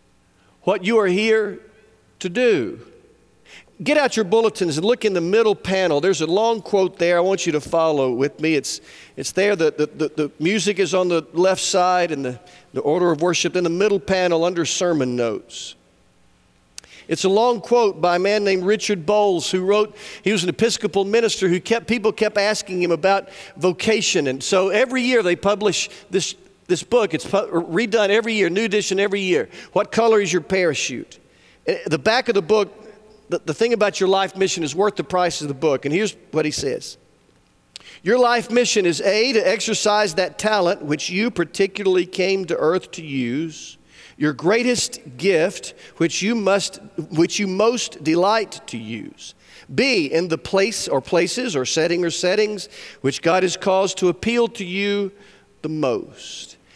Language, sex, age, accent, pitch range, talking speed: English, male, 50-69, American, 175-215 Hz, 180 wpm